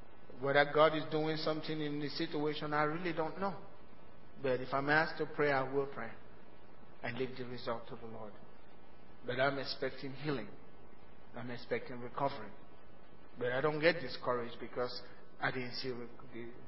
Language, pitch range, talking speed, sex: English, 130-180 Hz, 160 wpm, male